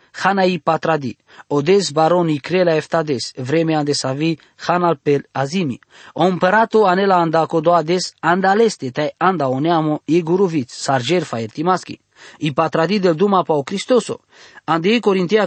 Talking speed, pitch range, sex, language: 130 wpm, 145-190 Hz, male, English